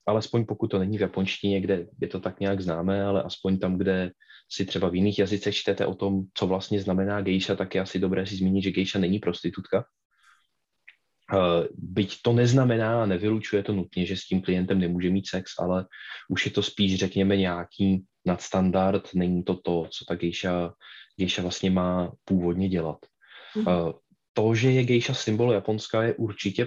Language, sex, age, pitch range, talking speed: Slovak, male, 20-39, 95-105 Hz, 175 wpm